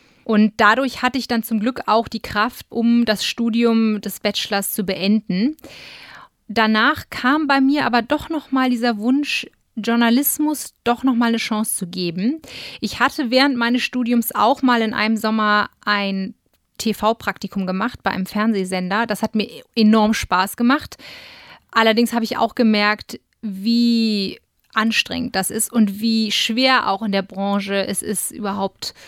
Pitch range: 210-245 Hz